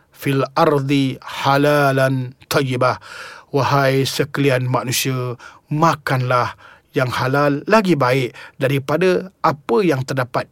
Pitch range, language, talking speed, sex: 140-190 Hz, Malay, 90 wpm, male